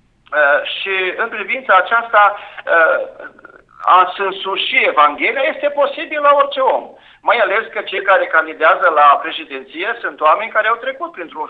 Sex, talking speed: male, 140 wpm